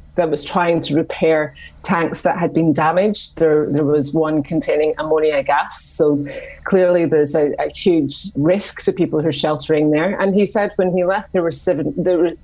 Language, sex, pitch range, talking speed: English, female, 150-180 Hz, 190 wpm